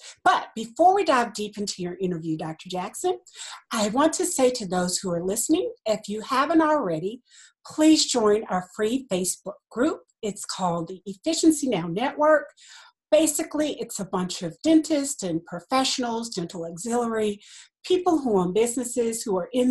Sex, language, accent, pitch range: female, English, American, 185-275 Hz